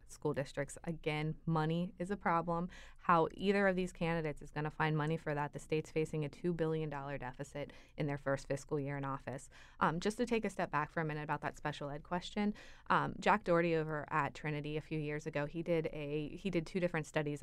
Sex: female